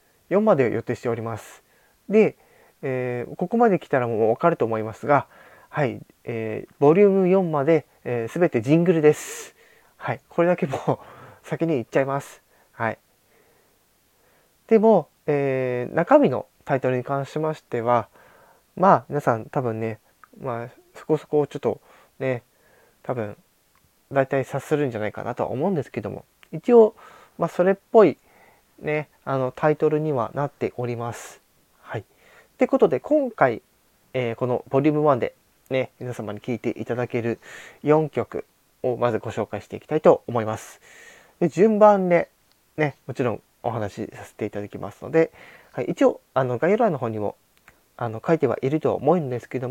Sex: male